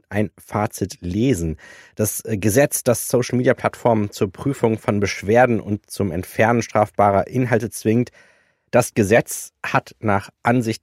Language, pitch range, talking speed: English, 95-120 Hz, 120 wpm